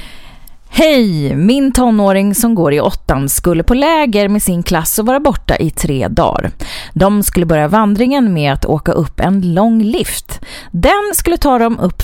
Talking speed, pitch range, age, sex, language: 175 wpm, 175-240 Hz, 30-49, female, English